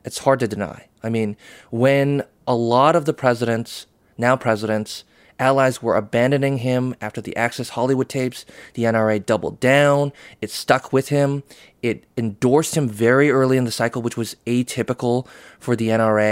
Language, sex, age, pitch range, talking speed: English, male, 20-39, 110-135 Hz, 165 wpm